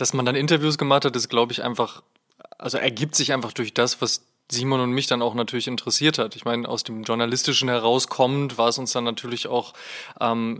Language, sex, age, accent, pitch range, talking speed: German, male, 20-39, German, 120-135 Hz, 215 wpm